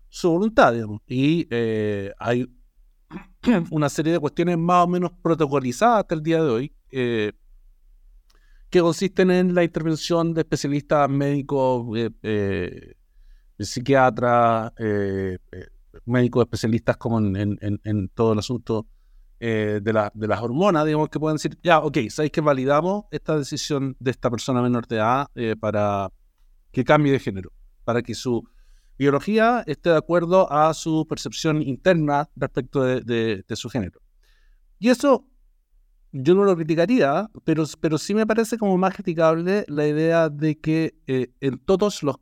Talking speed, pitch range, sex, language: 155 wpm, 115-165 Hz, male, Spanish